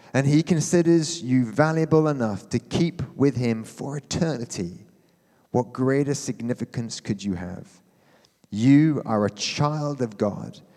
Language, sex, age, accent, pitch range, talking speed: English, male, 30-49, British, 105-130 Hz, 135 wpm